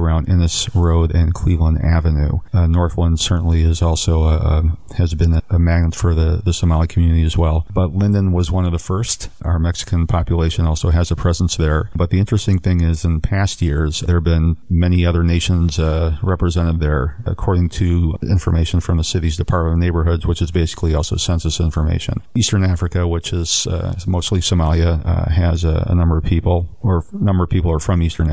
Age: 40-59